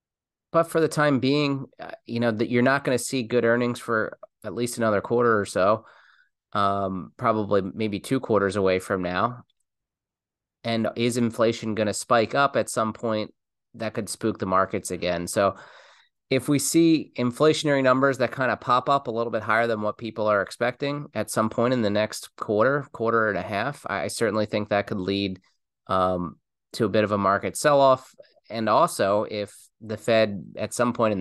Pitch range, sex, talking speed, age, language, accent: 100-120 Hz, male, 195 wpm, 30-49, English, American